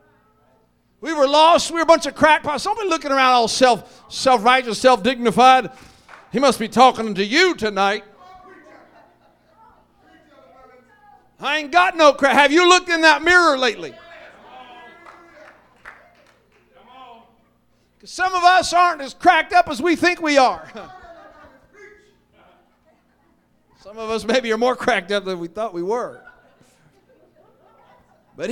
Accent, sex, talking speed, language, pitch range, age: American, male, 130 wpm, English, 255-345 Hz, 50-69